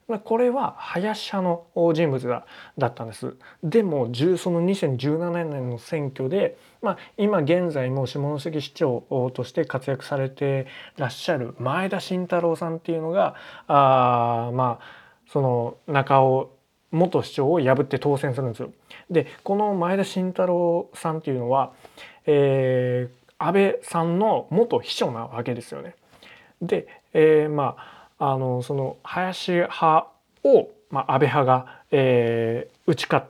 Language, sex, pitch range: Japanese, male, 125-165 Hz